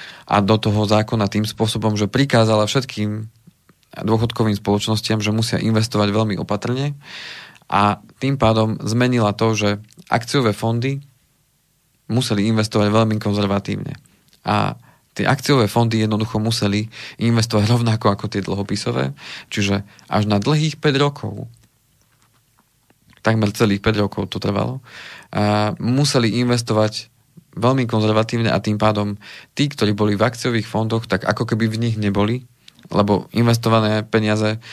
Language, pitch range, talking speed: Slovak, 105-115 Hz, 130 wpm